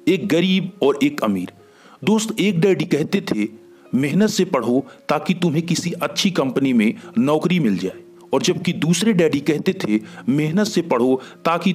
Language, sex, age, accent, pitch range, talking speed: Hindi, male, 40-59, native, 145-195 Hz, 165 wpm